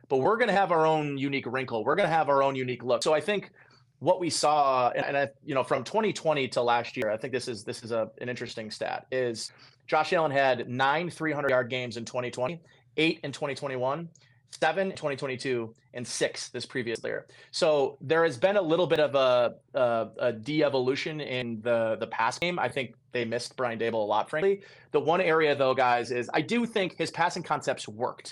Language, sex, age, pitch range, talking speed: English, male, 30-49, 125-150 Hz, 215 wpm